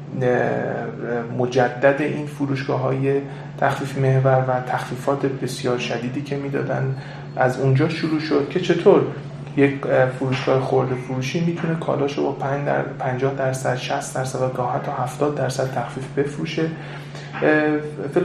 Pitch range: 130-160 Hz